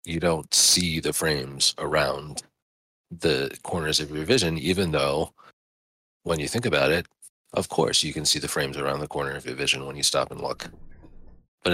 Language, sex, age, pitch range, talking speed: English, male, 40-59, 75-95 Hz, 190 wpm